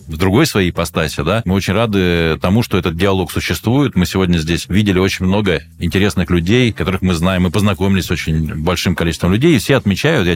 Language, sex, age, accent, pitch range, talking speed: Russian, male, 20-39, native, 90-110 Hz, 205 wpm